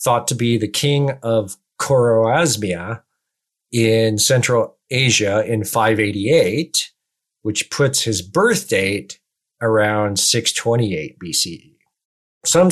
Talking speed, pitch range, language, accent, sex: 100 wpm, 105-130 Hz, English, American, male